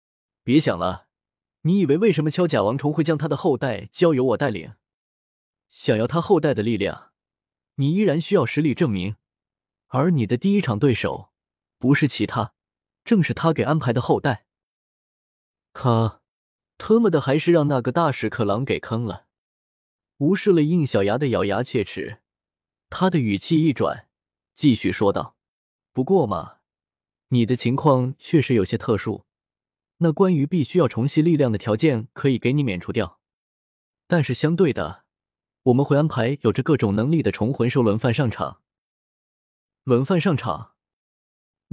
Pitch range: 110-160 Hz